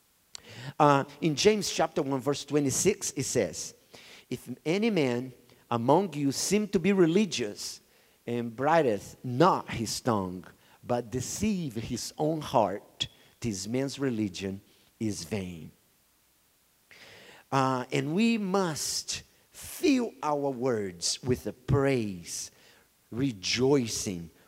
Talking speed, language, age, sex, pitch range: 110 wpm, English, 50-69, male, 120-165 Hz